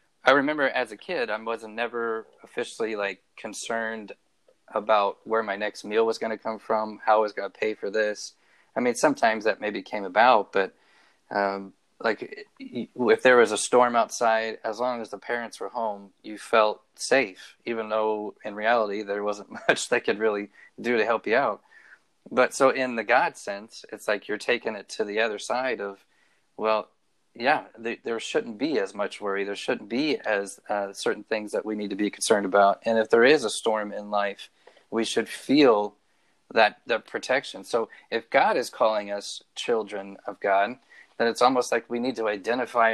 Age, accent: 20-39, American